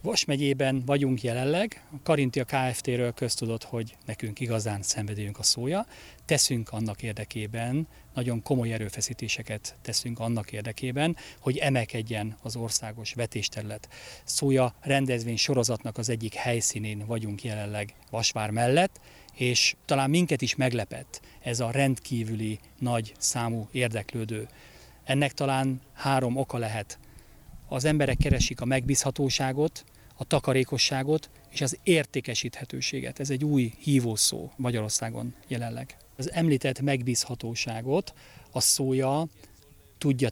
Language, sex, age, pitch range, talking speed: Hungarian, male, 40-59, 115-140 Hz, 115 wpm